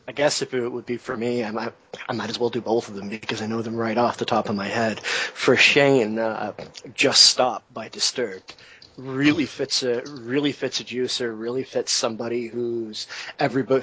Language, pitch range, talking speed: English, 115-130 Hz, 205 wpm